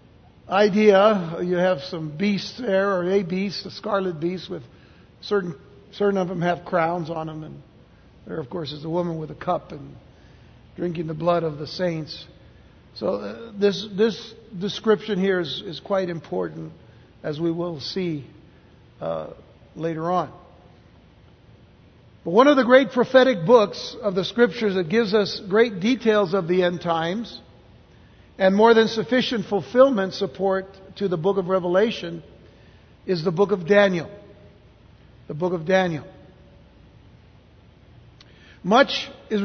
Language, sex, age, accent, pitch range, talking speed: English, male, 60-79, American, 165-215 Hz, 145 wpm